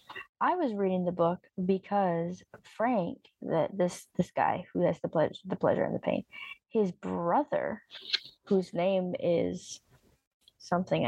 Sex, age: female, 20-39